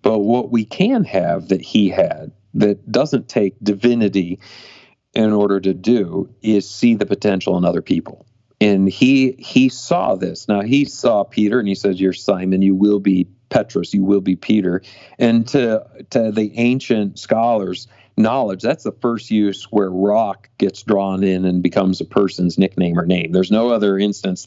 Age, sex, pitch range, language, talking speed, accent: 40-59, male, 95-115 Hz, English, 175 wpm, American